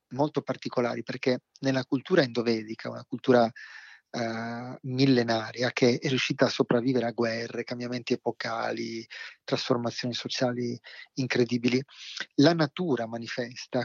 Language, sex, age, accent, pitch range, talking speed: Italian, male, 30-49, native, 125-135 Hz, 105 wpm